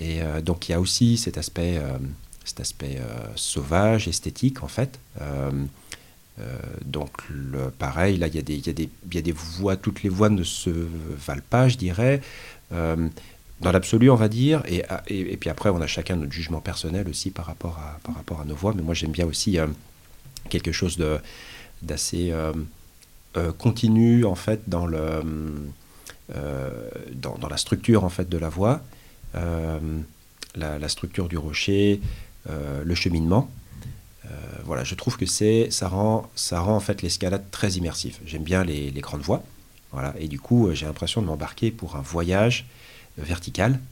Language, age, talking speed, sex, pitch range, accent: French, 40-59, 195 wpm, male, 80-105 Hz, French